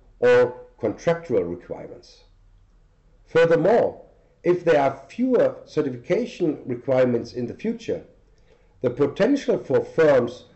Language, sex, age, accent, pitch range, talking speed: English, male, 50-69, German, 120-195 Hz, 95 wpm